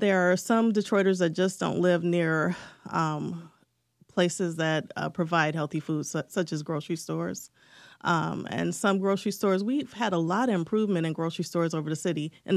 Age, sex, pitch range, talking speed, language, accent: 30-49, female, 165-190 Hz, 180 wpm, English, American